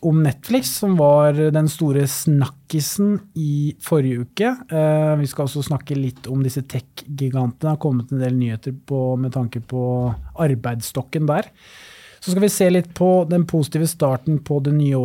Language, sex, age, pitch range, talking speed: English, male, 30-49, 130-160 Hz, 165 wpm